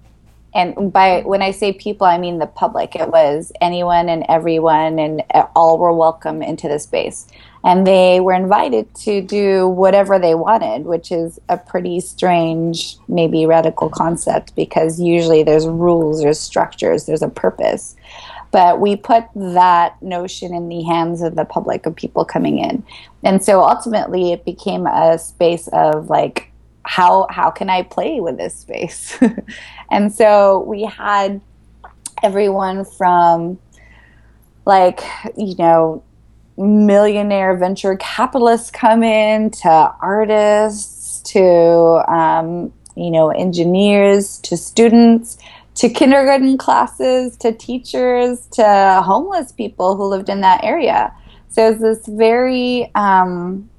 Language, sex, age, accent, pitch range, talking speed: English, female, 20-39, American, 170-215 Hz, 135 wpm